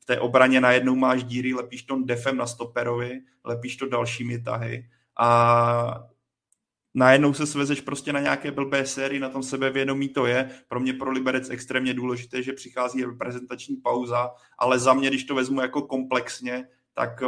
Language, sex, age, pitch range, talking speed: Czech, male, 30-49, 120-130 Hz, 165 wpm